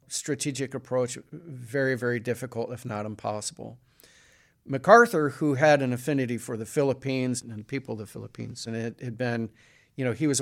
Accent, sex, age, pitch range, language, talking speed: American, male, 50-69, 120-145 Hz, English, 175 wpm